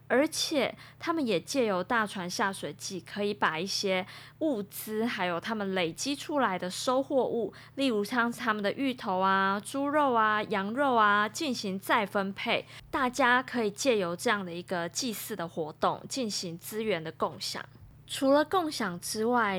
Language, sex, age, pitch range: Chinese, female, 20-39, 185-245 Hz